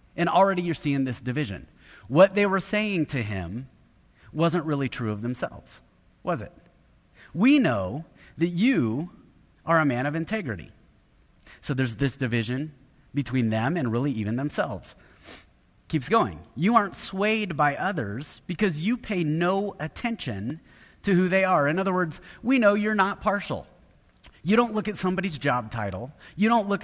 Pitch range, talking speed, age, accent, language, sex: 130-180 Hz, 160 wpm, 30-49, American, English, male